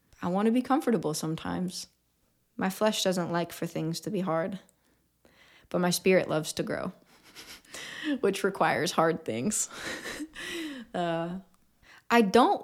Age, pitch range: 20-39, 160-185 Hz